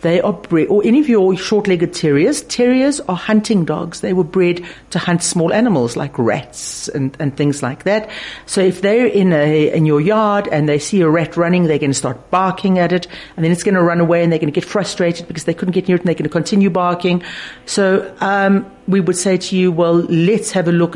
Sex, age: female, 50-69